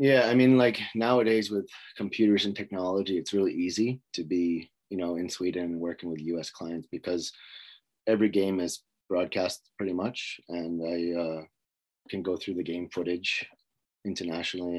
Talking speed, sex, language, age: 160 wpm, male, English, 30-49